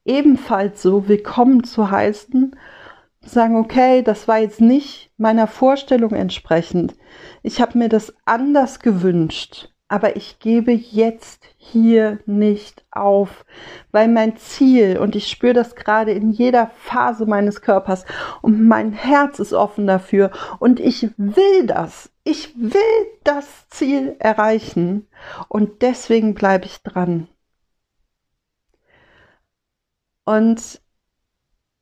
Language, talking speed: German, 115 wpm